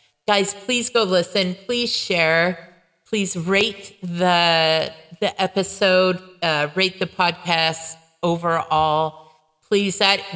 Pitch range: 165-205 Hz